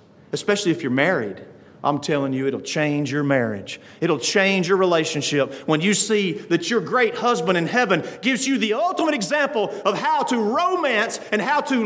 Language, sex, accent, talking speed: English, male, American, 180 wpm